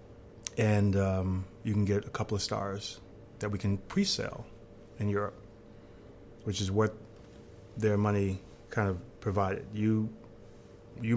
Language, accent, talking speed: English, American, 135 wpm